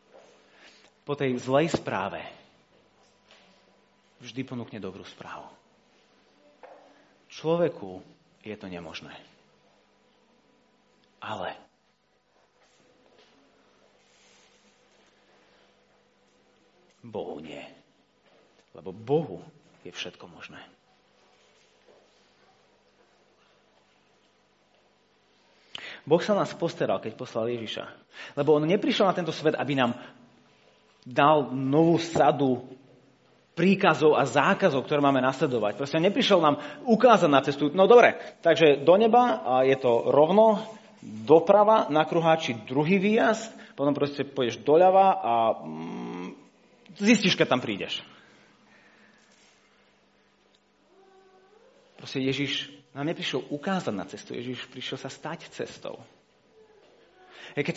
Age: 40-59